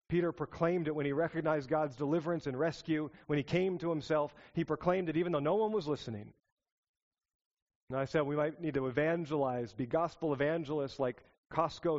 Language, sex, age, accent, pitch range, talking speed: English, male, 40-59, American, 135-175 Hz, 185 wpm